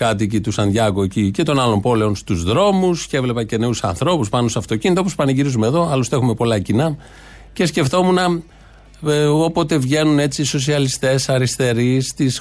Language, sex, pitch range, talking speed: Greek, male, 120-155 Hz, 165 wpm